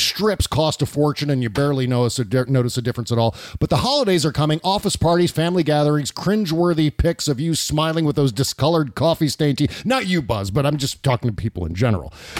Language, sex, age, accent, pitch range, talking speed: English, male, 40-59, American, 135-175 Hz, 210 wpm